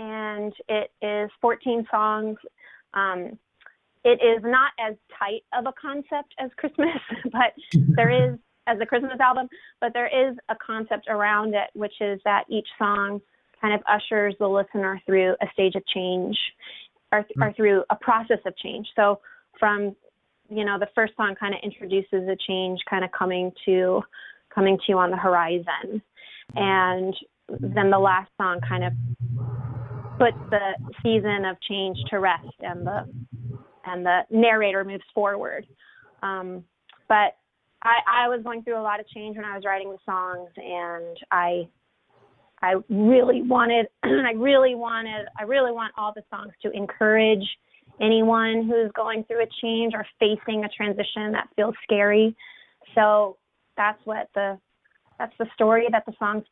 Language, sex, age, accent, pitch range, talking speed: English, female, 30-49, American, 195-230 Hz, 160 wpm